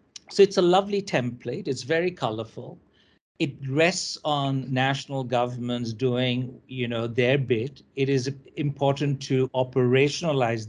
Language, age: English, 60-79